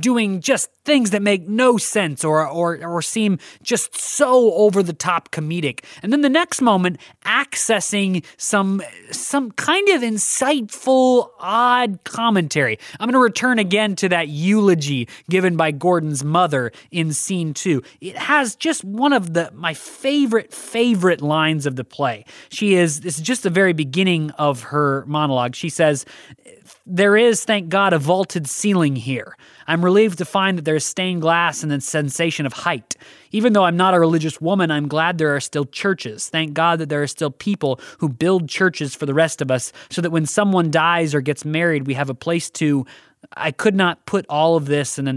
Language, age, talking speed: English, 20-39, 190 wpm